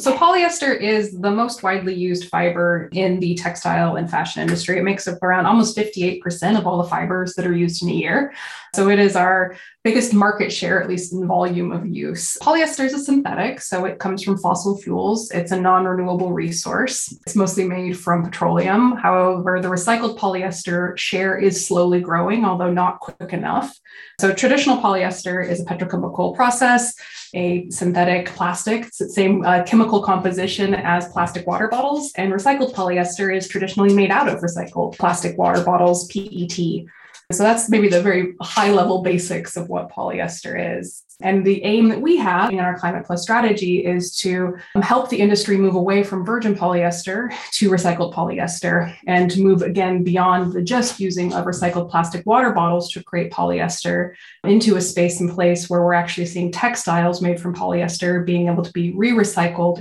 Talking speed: 175 wpm